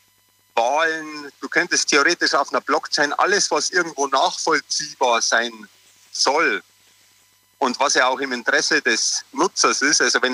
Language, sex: German, male